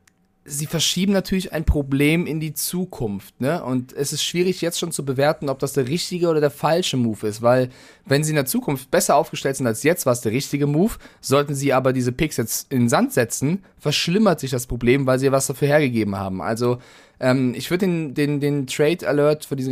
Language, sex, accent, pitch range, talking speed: German, male, German, 120-145 Hz, 220 wpm